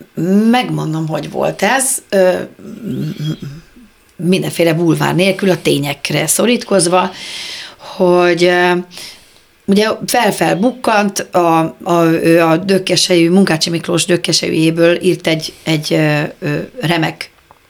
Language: Hungarian